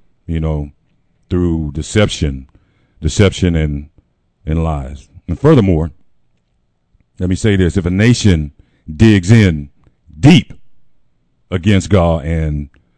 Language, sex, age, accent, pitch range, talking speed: English, male, 50-69, American, 75-100 Hz, 105 wpm